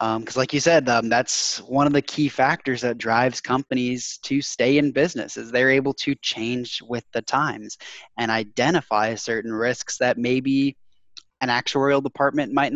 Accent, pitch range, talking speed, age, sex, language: American, 115-135 Hz, 175 wpm, 10-29, male, English